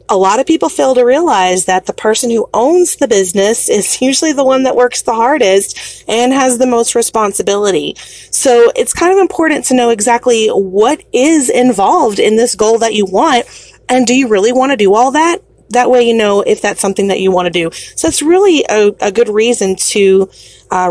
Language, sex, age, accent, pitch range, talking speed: English, female, 30-49, American, 195-280 Hz, 210 wpm